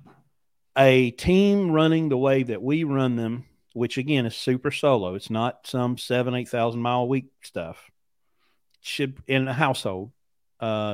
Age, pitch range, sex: 40-59, 110-140 Hz, male